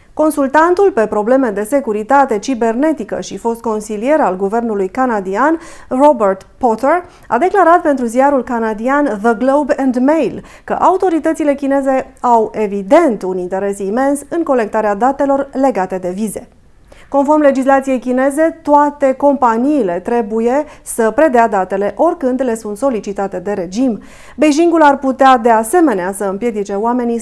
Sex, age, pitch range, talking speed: female, 30-49, 220-285 Hz, 130 wpm